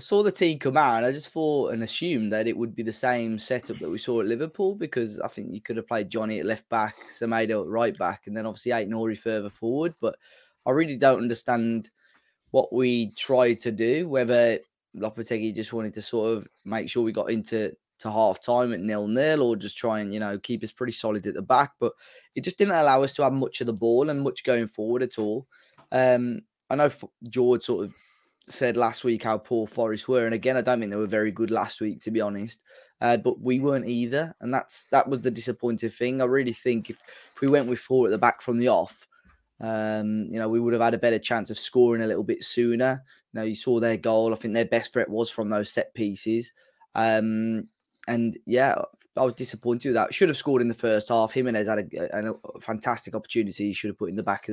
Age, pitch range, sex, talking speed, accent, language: 10-29, 110-125 Hz, male, 235 wpm, British, English